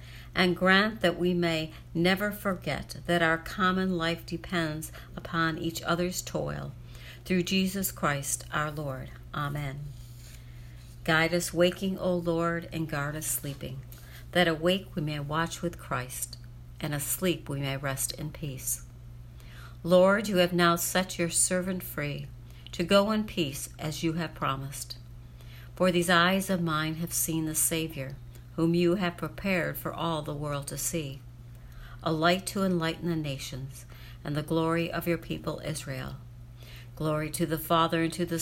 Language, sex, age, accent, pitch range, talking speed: English, female, 60-79, American, 125-175 Hz, 155 wpm